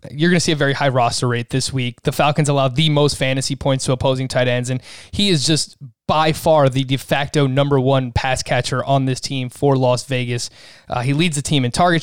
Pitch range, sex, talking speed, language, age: 130-160 Hz, male, 240 wpm, English, 20-39